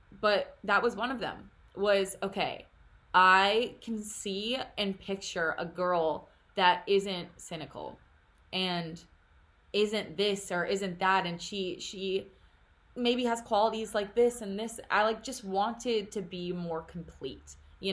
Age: 20-39